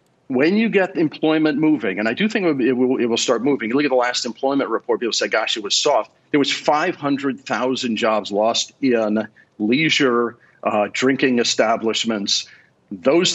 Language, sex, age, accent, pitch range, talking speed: English, male, 50-69, American, 115-145 Hz, 165 wpm